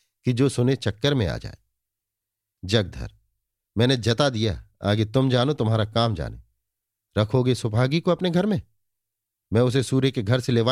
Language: Hindi